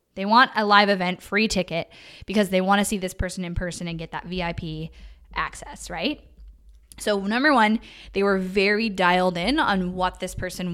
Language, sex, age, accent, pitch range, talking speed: English, female, 10-29, American, 180-215 Hz, 190 wpm